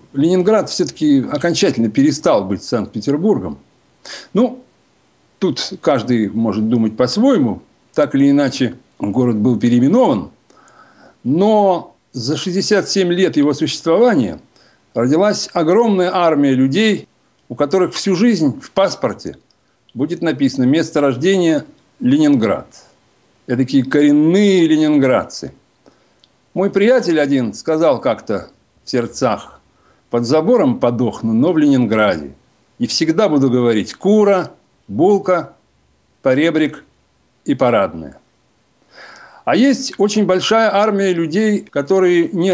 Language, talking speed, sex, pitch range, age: Russian, 105 wpm, male, 135-200 Hz, 60-79